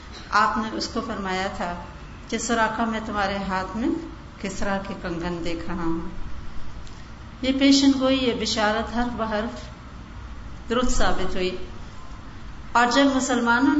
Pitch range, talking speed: 200-250 Hz, 90 wpm